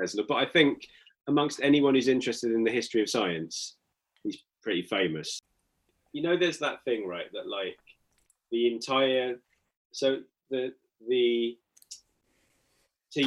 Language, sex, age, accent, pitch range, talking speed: English, male, 30-49, British, 110-145 Hz, 130 wpm